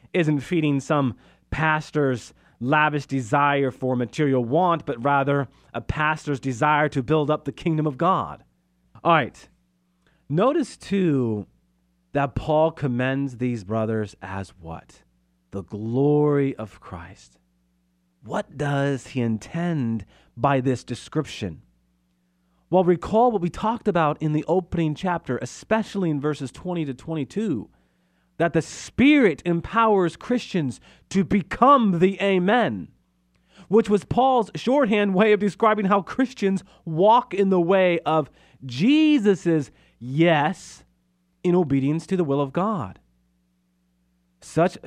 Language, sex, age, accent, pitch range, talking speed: English, male, 40-59, American, 110-180 Hz, 125 wpm